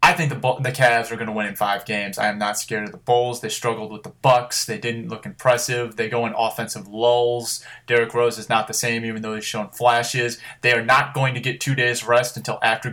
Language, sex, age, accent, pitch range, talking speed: English, male, 20-39, American, 115-140 Hz, 255 wpm